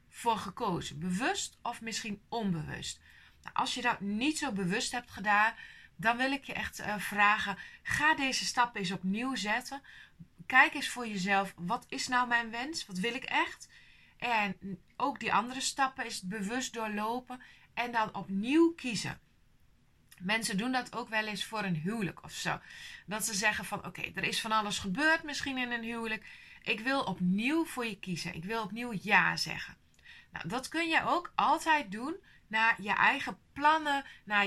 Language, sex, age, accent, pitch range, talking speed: Dutch, female, 20-39, Dutch, 195-260 Hz, 175 wpm